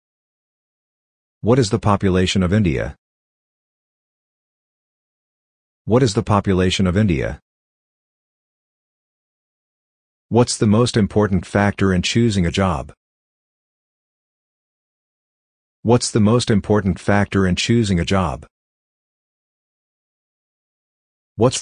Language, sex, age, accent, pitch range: Japanese, male, 50-69, American, 85-110 Hz